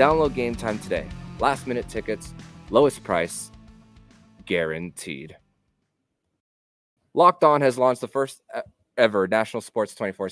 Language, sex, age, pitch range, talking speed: English, male, 20-39, 95-130 Hz, 115 wpm